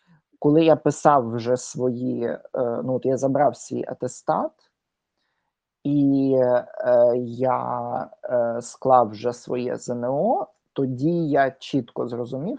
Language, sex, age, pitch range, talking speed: Ukrainian, male, 20-39, 130-160 Hz, 100 wpm